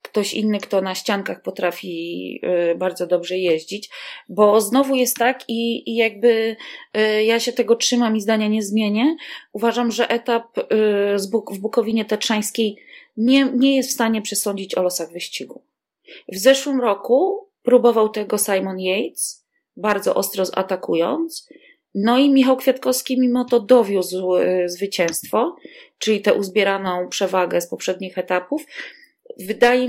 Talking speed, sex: 135 wpm, female